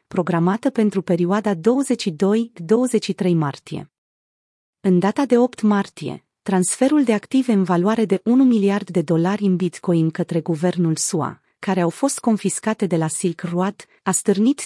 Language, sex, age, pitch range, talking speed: Romanian, female, 30-49, 175-225 Hz, 145 wpm